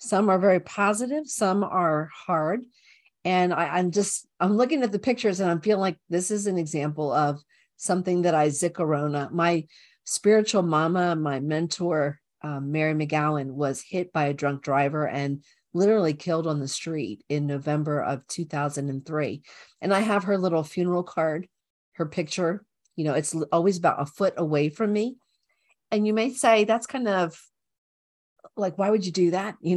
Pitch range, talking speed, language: 155-205 Hz, 170 wpm, English